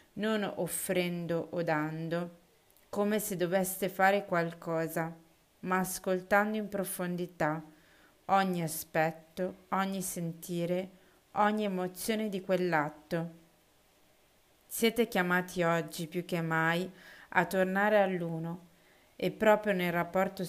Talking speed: 100 wpm